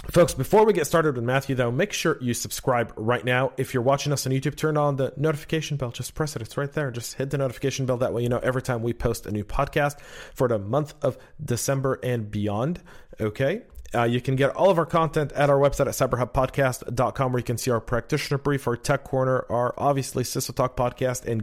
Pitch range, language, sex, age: 110-145 Hz, English, male, 40-59